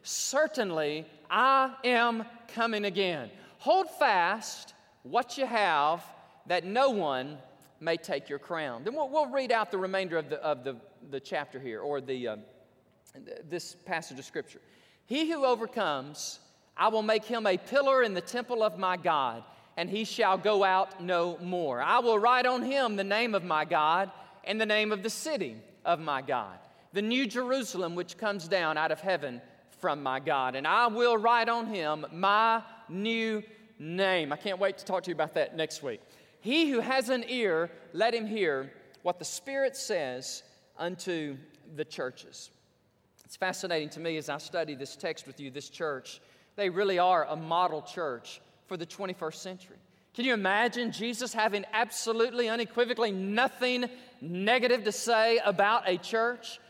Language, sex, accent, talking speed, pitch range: English, male, American, 175 wpm, 160-235 Hz